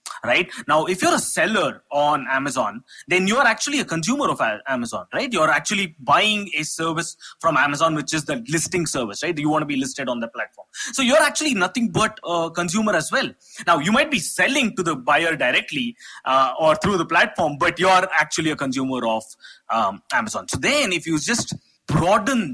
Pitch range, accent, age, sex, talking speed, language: 145-205 Hz, Indian, 20-39, male, 200 wpm, English